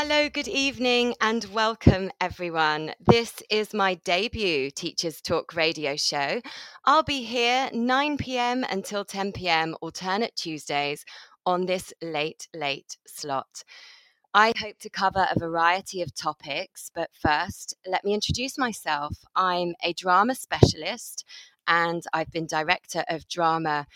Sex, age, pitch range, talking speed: female, 20-39, 160-225 Hz, 130 wpm